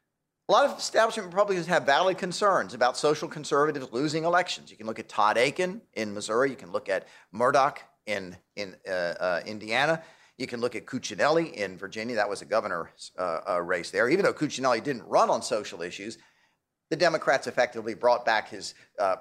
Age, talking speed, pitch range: 50-69, 185 wpm, 145-185 Hz